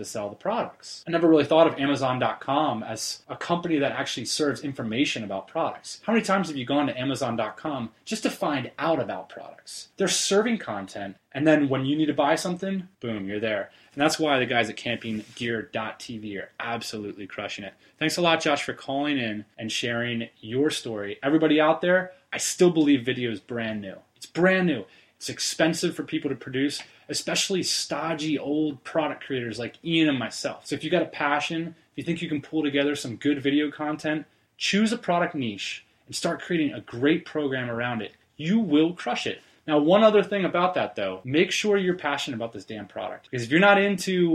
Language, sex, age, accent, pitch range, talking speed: English, male, 20-39, American, 120-165 Hz, 200 wpm